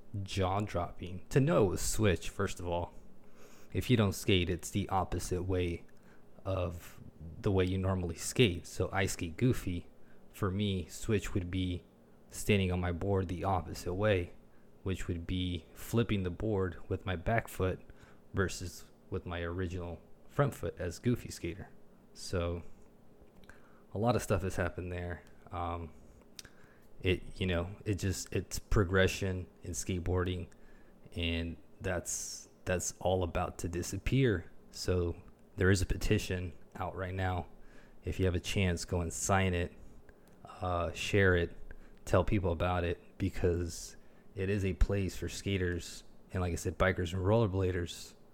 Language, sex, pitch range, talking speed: English, male, 85-100 Hz, 150 wpm